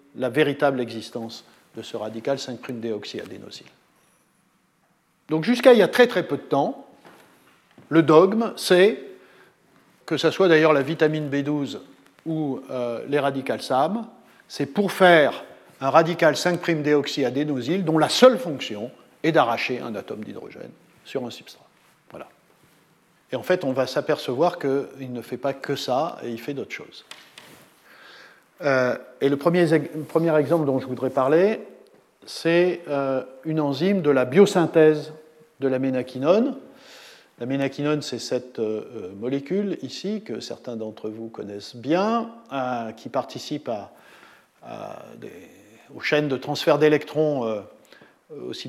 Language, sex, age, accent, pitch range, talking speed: French, male, 50-69, French, 130-170 Hz, 135 wpm